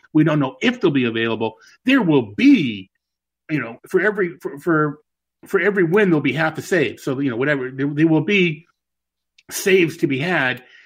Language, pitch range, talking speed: English, 130-175 Hz, 200 wpm